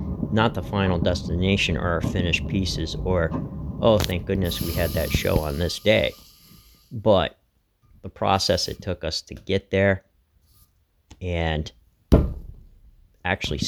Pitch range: 80-100 Hz